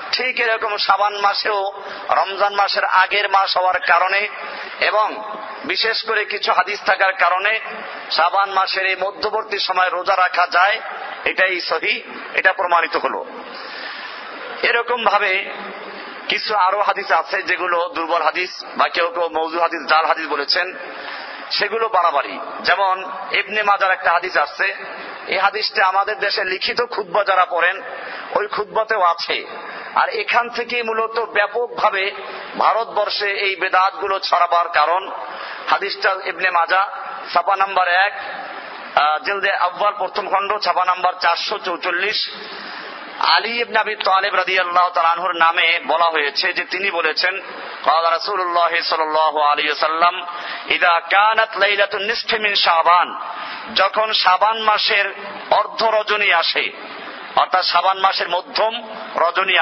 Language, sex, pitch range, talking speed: Bengali, male, 175-205 Hz, 110 wpm